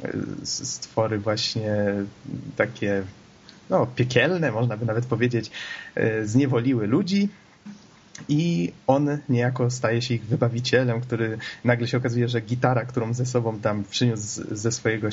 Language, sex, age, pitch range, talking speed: Polish, male, 20-39, 110-125 Hz, 125 wpm